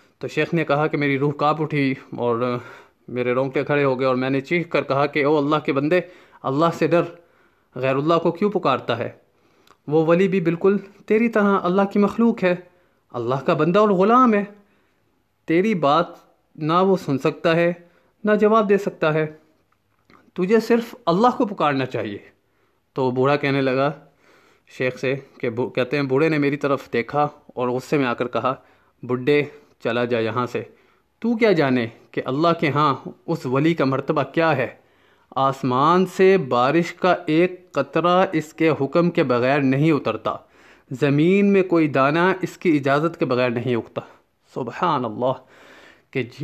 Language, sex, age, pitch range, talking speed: Urdu, male, 30-49, 135-180 Hz, 175 wpm